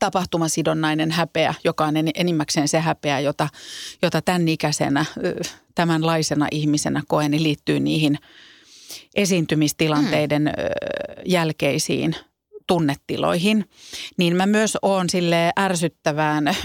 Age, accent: 40-59, native